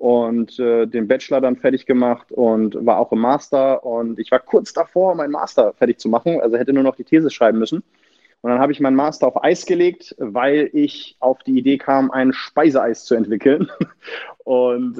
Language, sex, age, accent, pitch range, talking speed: German, male, 30-49, German, 120-140 Hz, 200 wpm